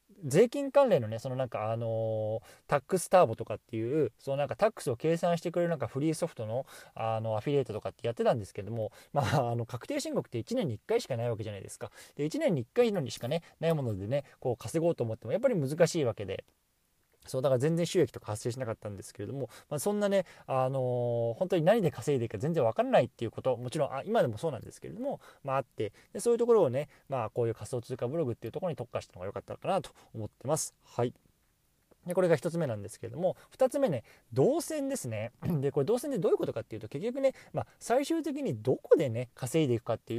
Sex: male